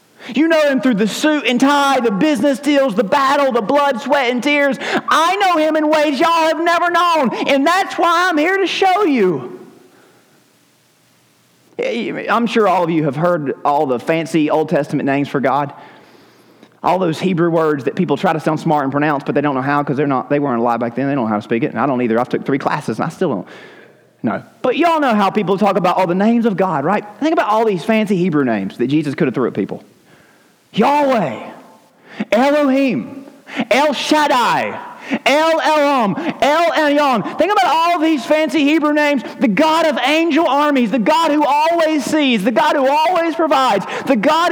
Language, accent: English, American